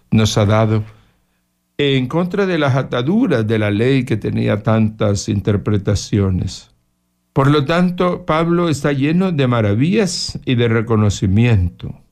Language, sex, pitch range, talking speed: Spanish, male, 100-130 Hz, 130 wpm